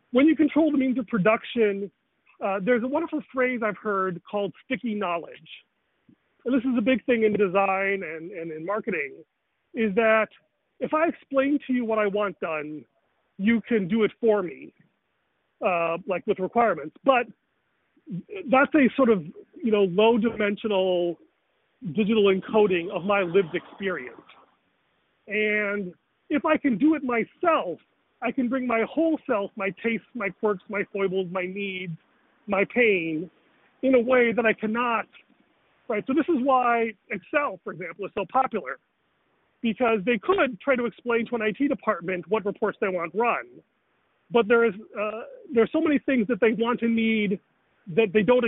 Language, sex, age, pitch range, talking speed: English, male, 40-59, 200-250 Hz, 165 wpm